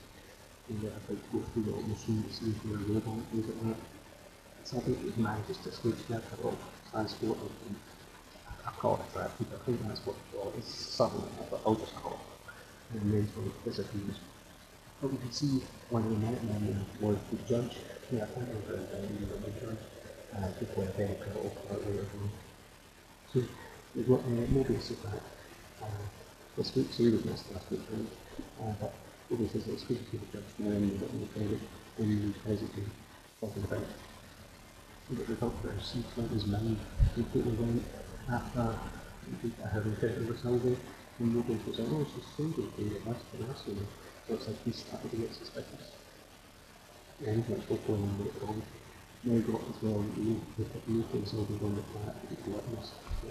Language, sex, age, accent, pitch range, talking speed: English, male, 40-59, British, 100-115 Hz, 155 wpm